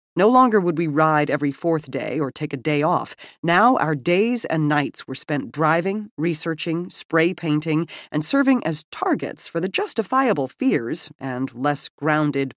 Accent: American